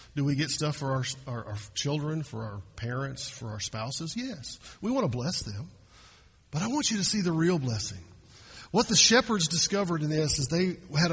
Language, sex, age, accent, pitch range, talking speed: English, male, 50-69, American, 135-190 Hz, 210 wpm